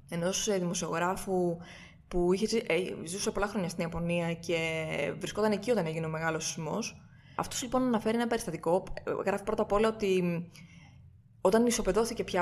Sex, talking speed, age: female, 140 wpm, 20-39